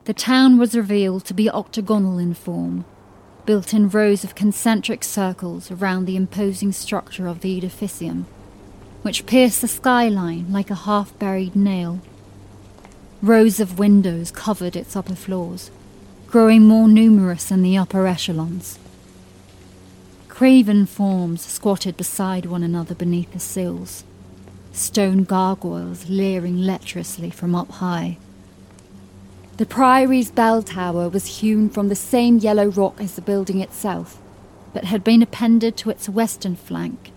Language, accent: English, British